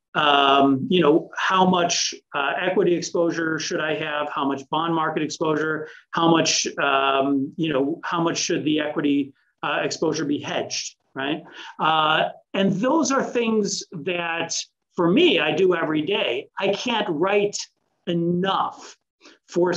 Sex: male